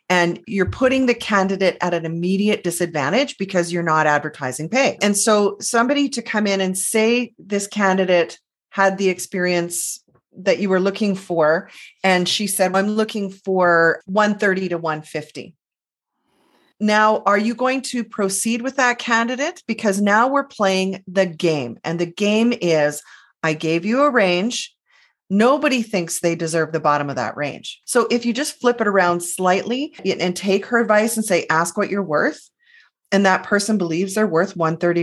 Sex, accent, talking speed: female, American, 170 wpm